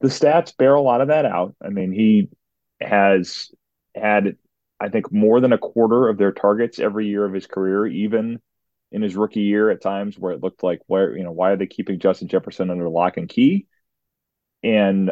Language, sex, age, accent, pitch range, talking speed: English, male, 30-49, American, 95-120 Hz, 205 wpm